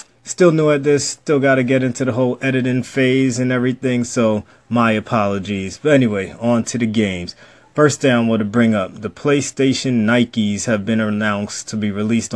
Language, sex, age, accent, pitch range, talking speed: English, male, 30-49, American, 105-125 Hz, 190 wpm